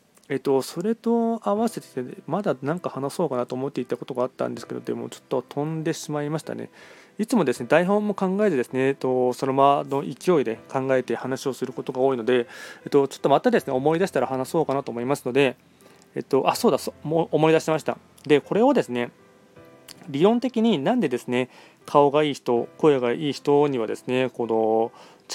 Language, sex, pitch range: Japanese, male, 125-160 Hz